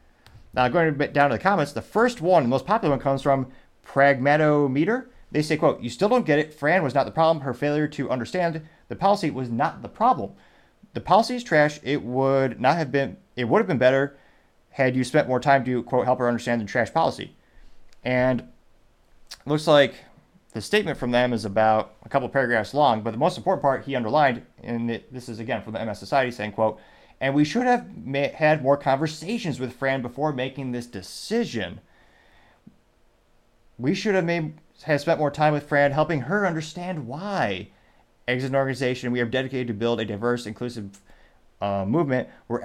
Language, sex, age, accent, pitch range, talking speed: English, male, 30-49, American, 120-150 Hz, 195 wpm